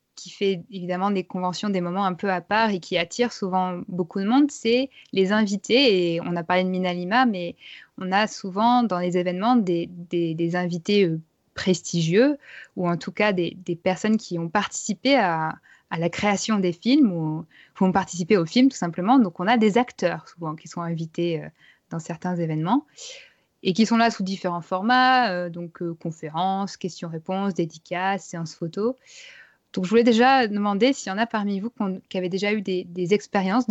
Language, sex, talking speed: French, female, 195 wpm